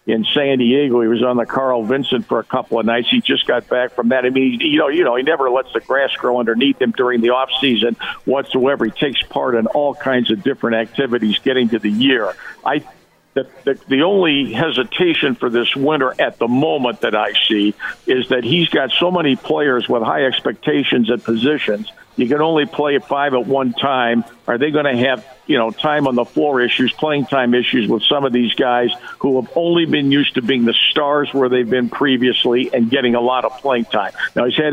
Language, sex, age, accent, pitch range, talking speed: English, male, 50-69, American, 120-145 Hz, 225 wpm